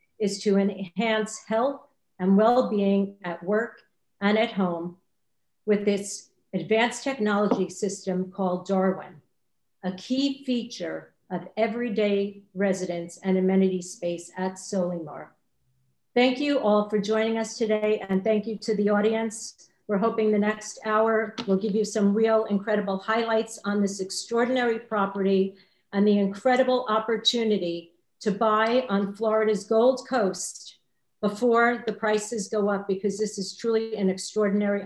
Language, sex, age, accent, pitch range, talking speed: English, female, 50-69, American, 195-225 Hz, 135 wpm